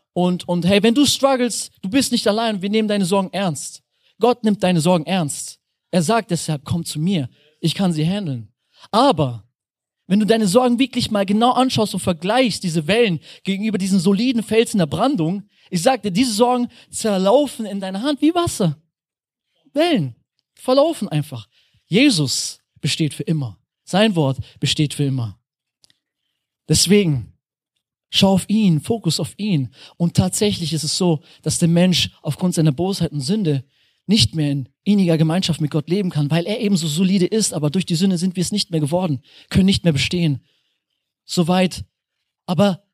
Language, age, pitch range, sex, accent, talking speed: German, 40-59, 155-210 Hz, male, German, 170 wpm